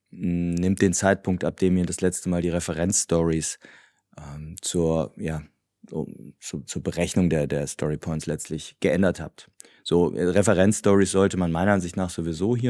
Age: 30-49